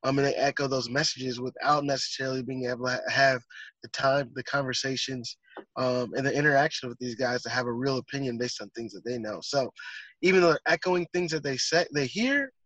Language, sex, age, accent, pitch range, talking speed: English, male, 20-39, American, 135-170 Hz, 215 wpm